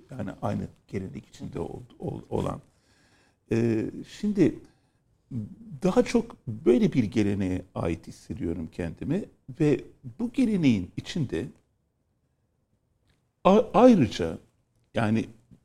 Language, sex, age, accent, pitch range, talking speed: Turkish, male, 60-79, native, 110-170 Hz, 75 wpm